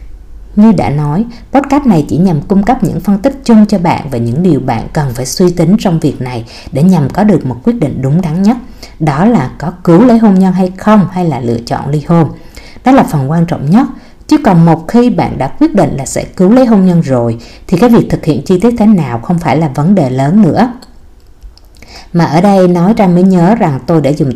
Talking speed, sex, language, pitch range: 245 wpm, female, Vietnamese, 150-205 Hz